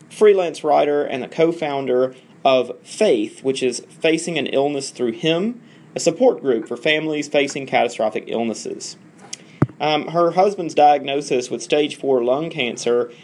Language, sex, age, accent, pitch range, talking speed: English, male, 30-49, American, 130-155 Hz, 145 wpm